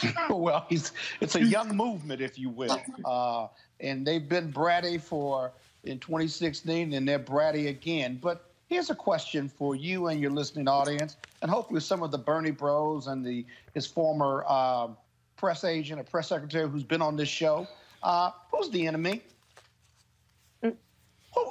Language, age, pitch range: English, 50-69, 150-235 Hz